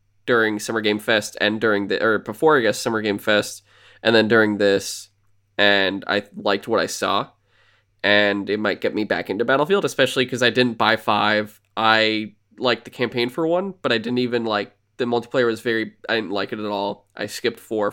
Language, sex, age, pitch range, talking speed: English, male, 20-39, 105-125 Hz, 210 wpm